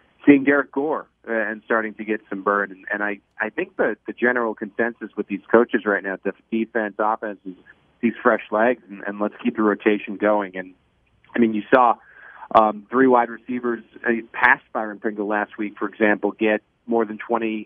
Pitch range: 105-115 Hz